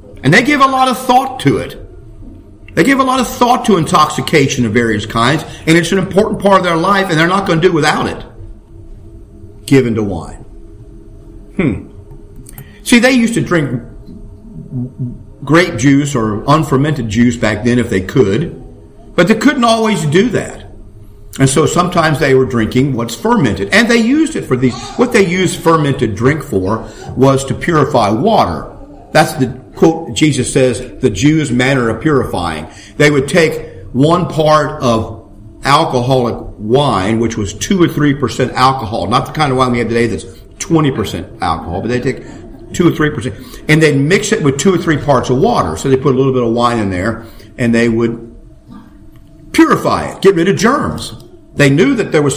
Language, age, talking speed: English, 50-69, 190 wpm